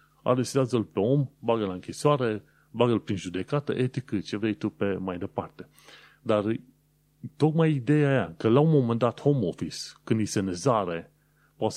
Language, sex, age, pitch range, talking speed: Romanian, male, 30-49, 100-130 Hz, 165 wpm